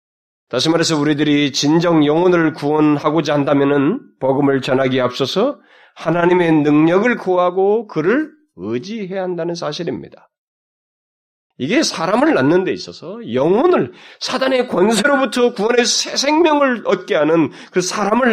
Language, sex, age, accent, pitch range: Korean, male, 30-49, native, 145-240 Hz